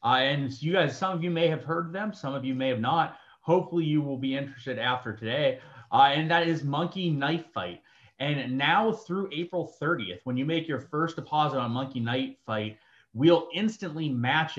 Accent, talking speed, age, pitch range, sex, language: American, 205 wpm, 30-49, 120-160 Hz, male, English